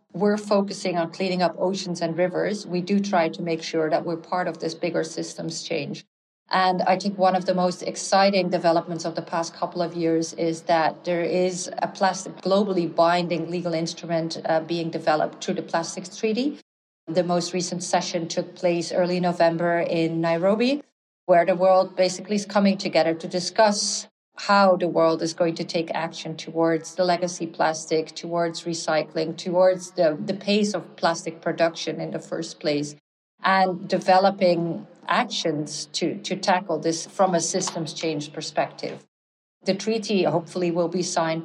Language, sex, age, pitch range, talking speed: English, female, 40-59, 165-185 Hz, 170 wpm